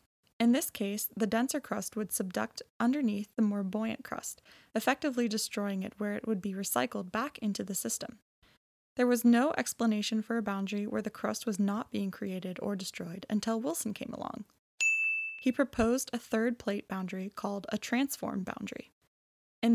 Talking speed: 170 wpm